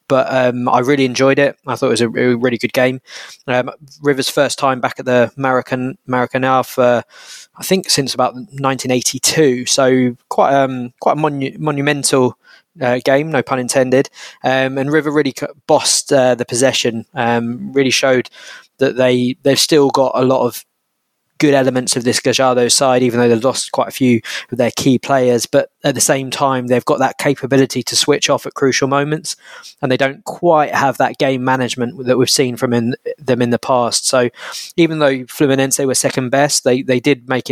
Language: English